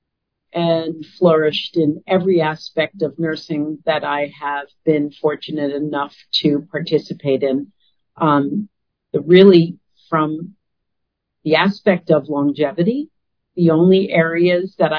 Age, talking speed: 50-69, 110 wpm